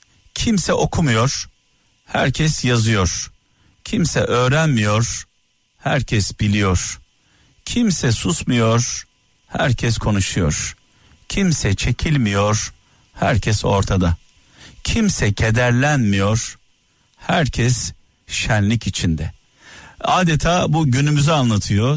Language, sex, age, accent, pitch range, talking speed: Turkish, male, 50-69, native, 100-125 Hz, 70 wpm